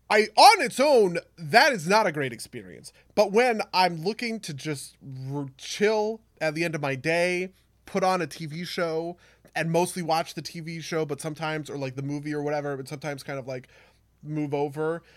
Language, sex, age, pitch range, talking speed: English, male, 20-39, 135-185 Hz, 200 wpm